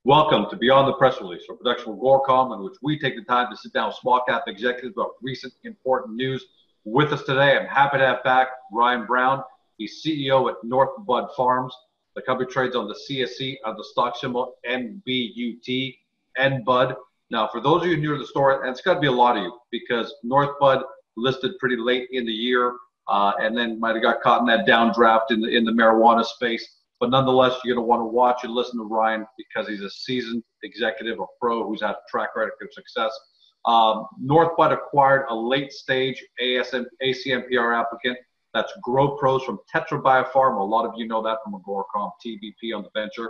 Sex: male